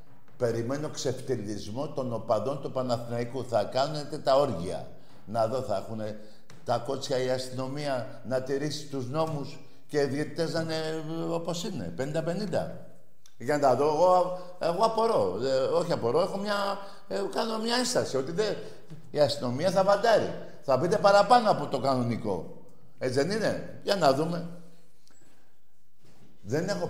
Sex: male